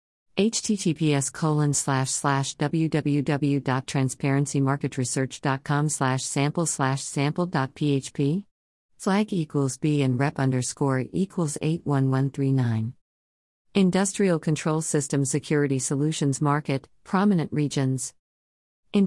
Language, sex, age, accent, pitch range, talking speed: English, female, 50-69, American, 135-155 Hz, 80 wpm